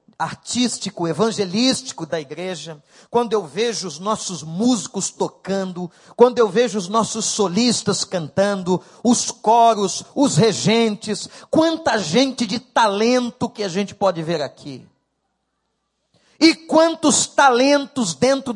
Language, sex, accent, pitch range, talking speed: Portuguese, male, Brazilian, 200-255 Hz, 115 wpm